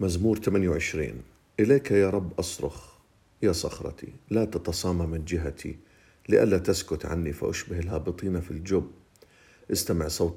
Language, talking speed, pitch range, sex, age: Arabic, 125 wpm, 90-105 Hz, male, 50-69